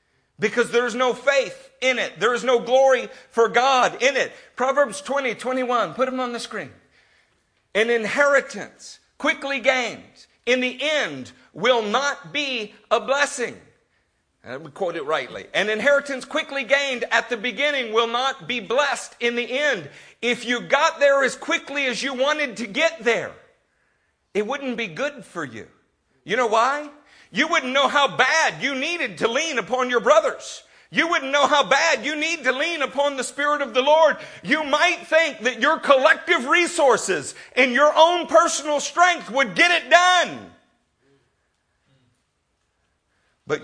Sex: male